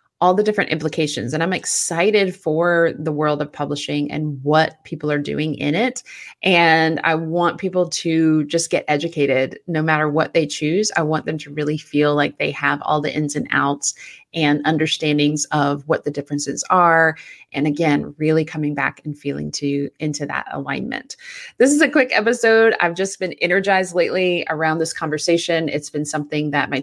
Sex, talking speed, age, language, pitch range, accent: female, 185 wpm, 30-49, English, 150-175 Hz, American